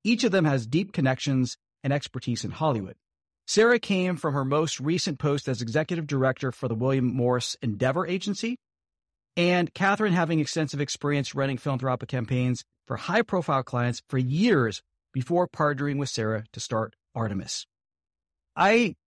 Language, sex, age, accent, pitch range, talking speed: English, male, 50-69, American, 120-160 Hz, 150 wpm